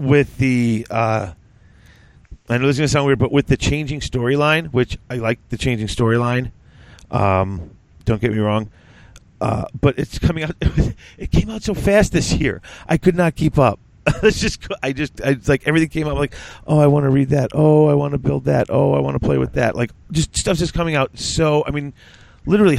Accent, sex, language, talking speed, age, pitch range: American, male, English, 220 wpm, 40-59, 105-135 Hz